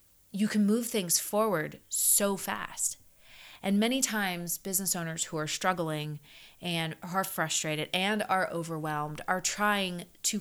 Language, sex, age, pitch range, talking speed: English, female, 30-49, 160-205 Hz, 140 wpm